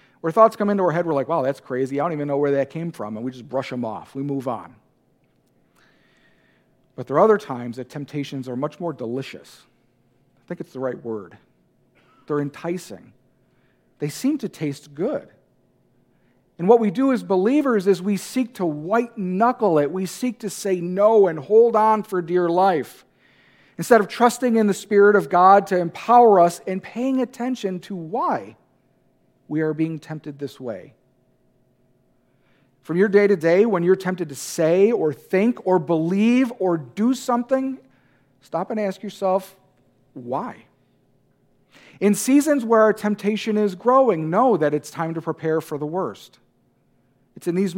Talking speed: 175 wpm